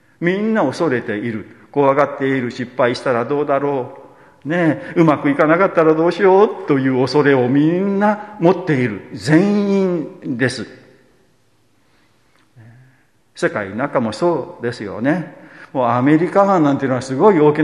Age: 50-69